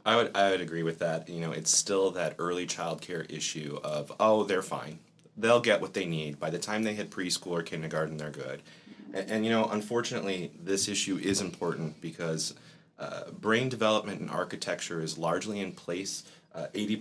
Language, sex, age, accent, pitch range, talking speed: English, male, 30-49, American, 90-120 Hz, 195 wpm